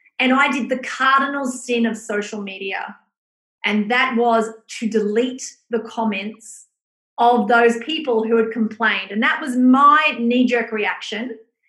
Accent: Australian